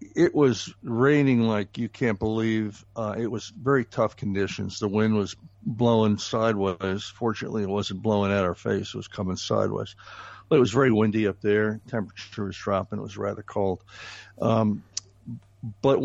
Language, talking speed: English, 170 wpm